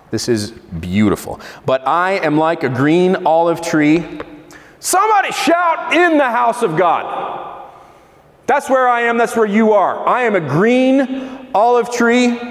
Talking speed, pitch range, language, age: 155 wpm, 185-260 Hz, English, 30-49